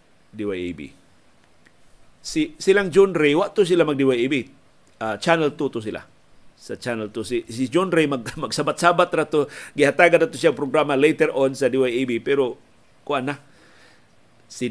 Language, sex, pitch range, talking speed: Filipino, male, 120-150 Hz, 160 wpm